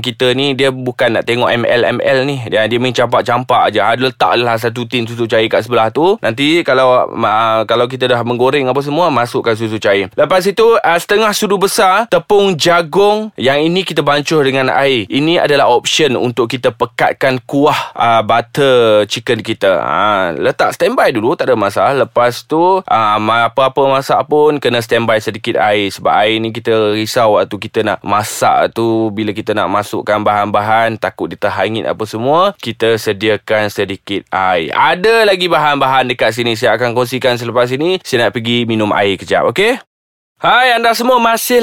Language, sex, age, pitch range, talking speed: Malay, male, 20-39, 110-155 Hz, 175 wpm